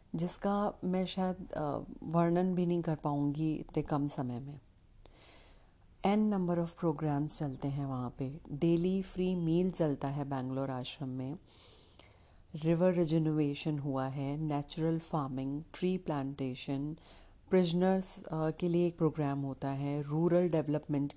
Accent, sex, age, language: native, female, 40-59, Hindi